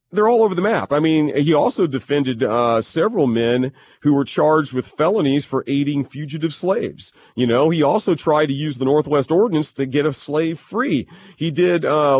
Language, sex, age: English, male, 40-59